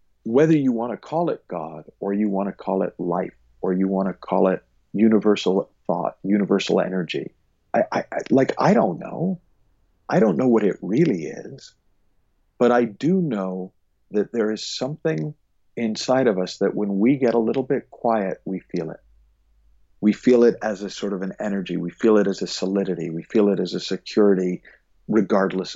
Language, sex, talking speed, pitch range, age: English, male, 185 wpm, 90-130 Hz, 50-69